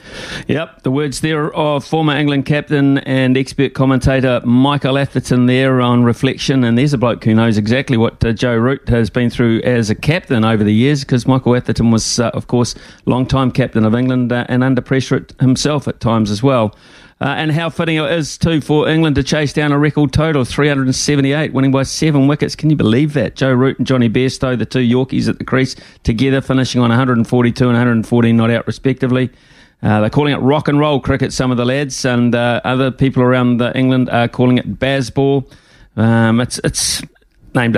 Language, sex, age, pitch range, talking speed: English, male, 40-59, 120-140 Hz, 215 wpm